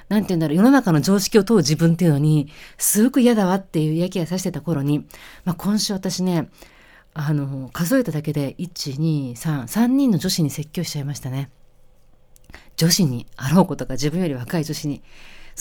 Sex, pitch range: female, 155-220 Hz